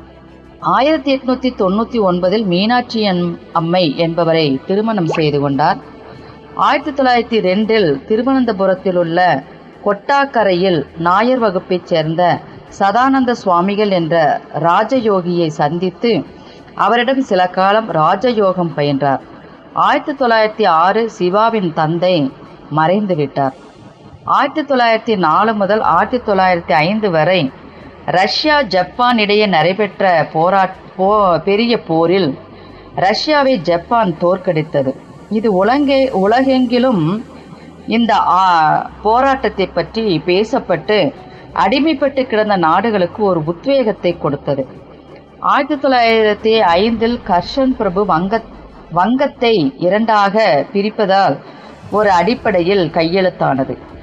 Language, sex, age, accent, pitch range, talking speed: Tamil, female, 30-49, native, 170-230 Hz, 80 wpm